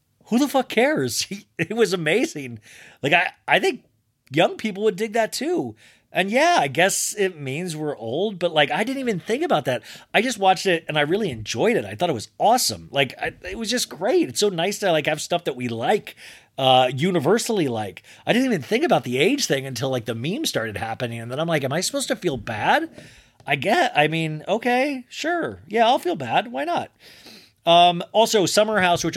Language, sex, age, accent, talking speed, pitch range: English, male, 30-49, American, 220 wpm, 125-190 Hz